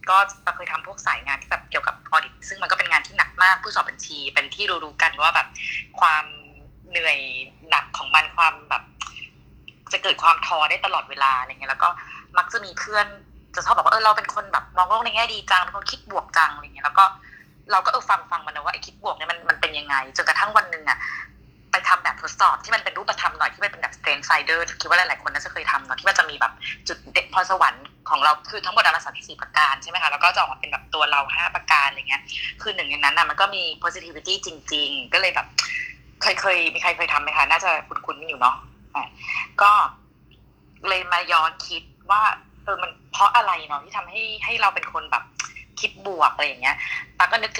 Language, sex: Thai, female